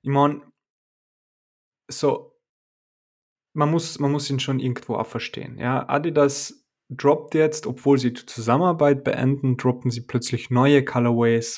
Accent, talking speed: German, 130 wpm